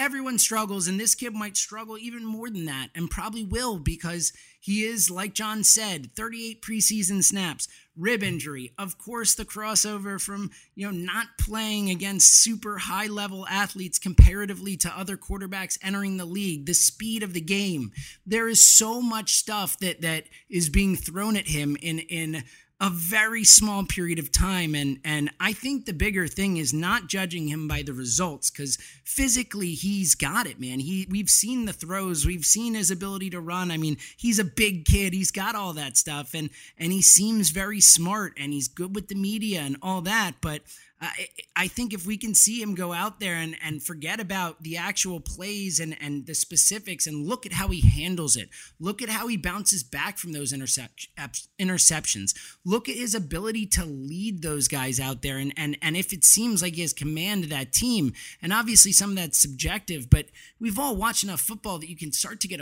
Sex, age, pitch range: male, 30-49, 155-210 Hz